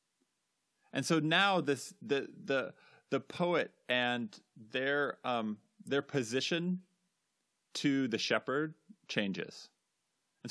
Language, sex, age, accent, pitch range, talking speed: English, male, 30-49, American, 105-160 Hz, 105 wpm